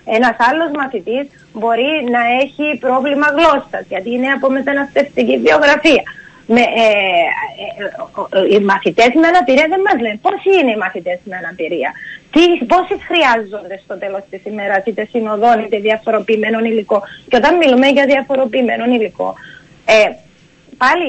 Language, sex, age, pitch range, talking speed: Greek, female, 30-49, 220-270 Hz, 125 wpm